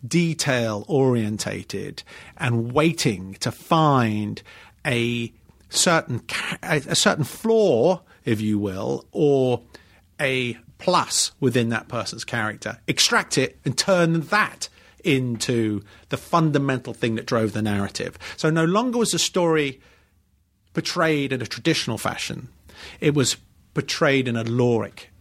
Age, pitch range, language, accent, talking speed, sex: 40-59, 110-155 Hz, English, British, 125 wpm, male